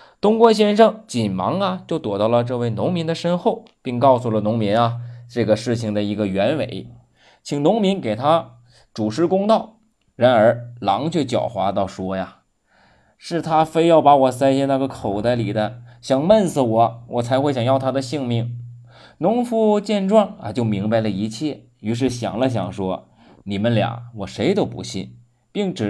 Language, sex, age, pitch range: Chinese, male, 20-39, 110-150 Hz